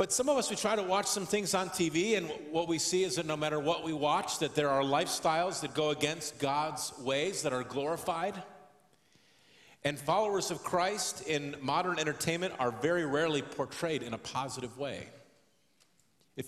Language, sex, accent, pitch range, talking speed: English, male, American, 130-160 Hz, 185 wpm